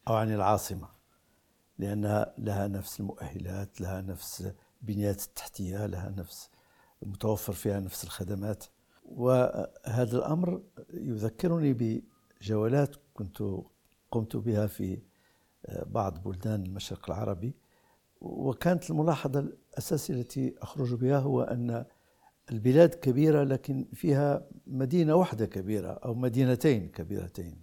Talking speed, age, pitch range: 100 wpm, 60-79, 100-130 Hz